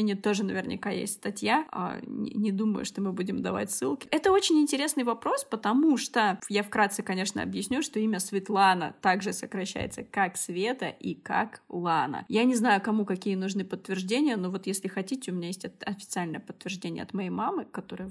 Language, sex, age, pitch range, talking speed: Russian, female, 20-39, 195-235 Hz, 170 wpm